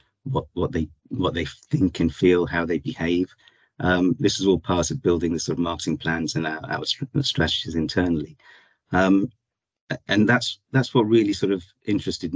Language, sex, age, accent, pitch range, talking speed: English, male, 50-69, British, 85-105 Hz, 180 wpm